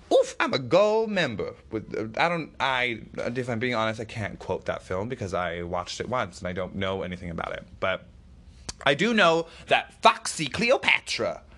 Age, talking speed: 20-39, 185 wpm